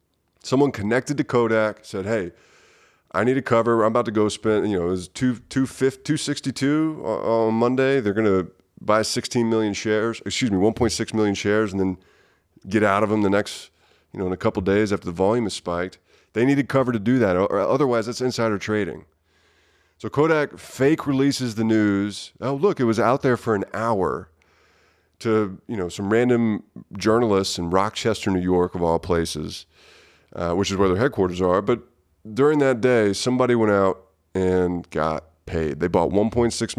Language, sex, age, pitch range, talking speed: English, male, 30-49, 90-115 Hz, 190 wpm